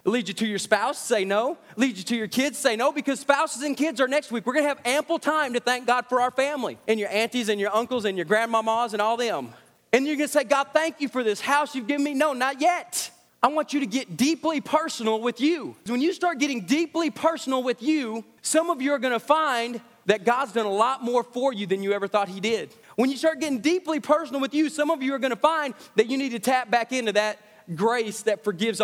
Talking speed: 255 wpm